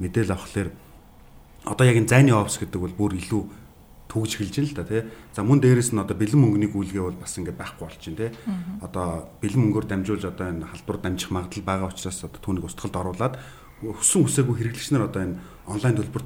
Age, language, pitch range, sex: 30-49, English, 90-115 Hz, male